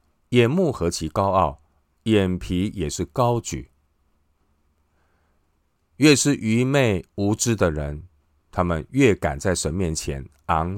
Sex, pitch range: male, 75-100 Hz